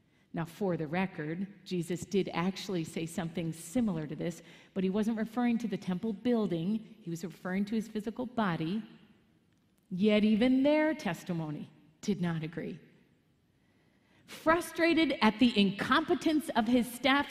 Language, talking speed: English, 140 wpm